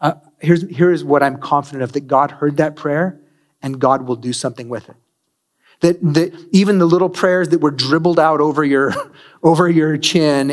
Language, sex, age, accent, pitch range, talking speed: English, male, 30-49, American, 145-180 Hz, 195 wpm